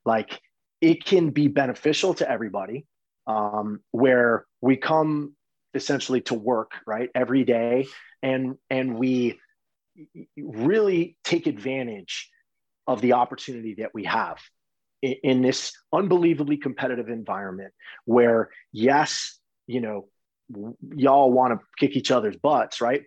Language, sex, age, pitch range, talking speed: English, male, 30-49, 120-150 Hz, 120 wpm